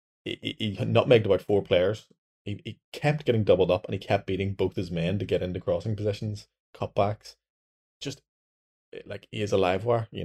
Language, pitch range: English, 90-120 Hz